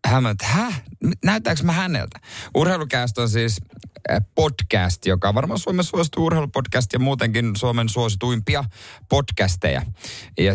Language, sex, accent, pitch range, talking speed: Finnish, male, native, 95-135 Hz, 125 wpm